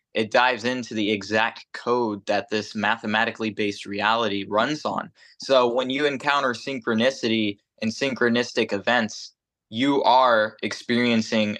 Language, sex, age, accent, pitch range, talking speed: English, male, 20-39, American, 105-120 Hz, 120 wpm